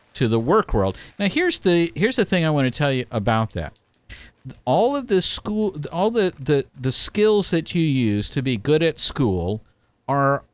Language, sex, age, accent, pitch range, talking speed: English, male, 50-69, American, 110-150 Hz, 200 wpm